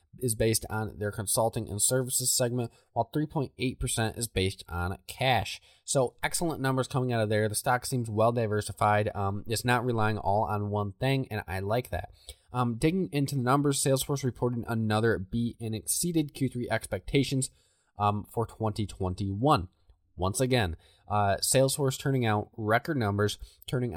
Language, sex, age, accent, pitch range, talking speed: English, male, 20-39, American, 100-130 Hz, 160 wpm